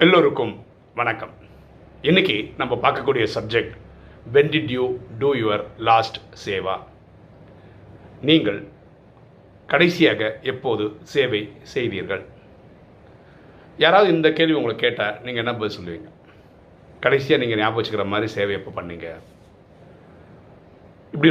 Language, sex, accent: Tamil, male, native